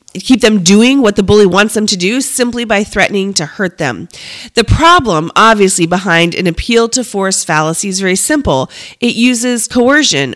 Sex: female